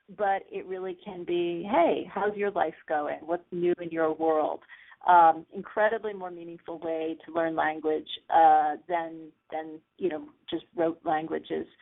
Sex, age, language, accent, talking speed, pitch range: female, 40-59, English, American, 155 wpm, 170-235 Hz